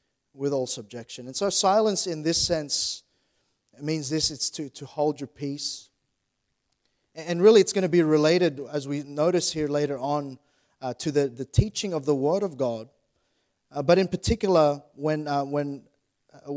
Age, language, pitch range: 30-49, English, 135-170 Hz